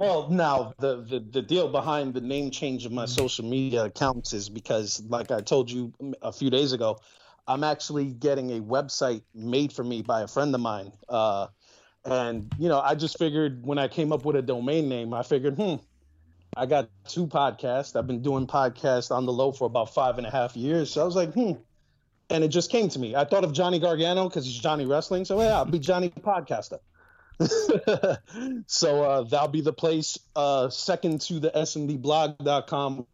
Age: 30-49